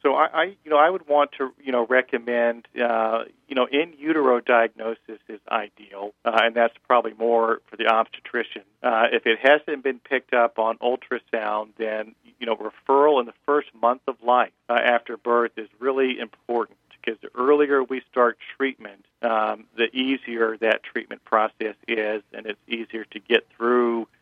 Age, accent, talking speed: 40-59, American, 180 wpm